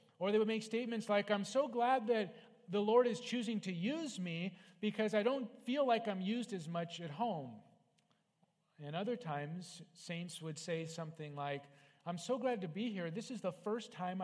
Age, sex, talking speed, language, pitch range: 40-59, male, 200 wpm, English, 170-230 Hz